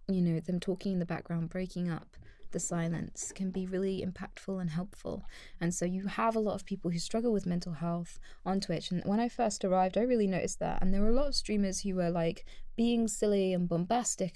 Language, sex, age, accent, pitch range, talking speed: English, female, 20-39, British, 165-195 Hz, 230 wpm